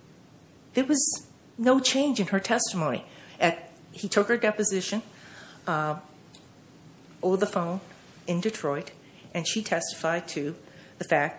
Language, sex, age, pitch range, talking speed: English, female, 50-69, 140-165 Hz, 125 wpm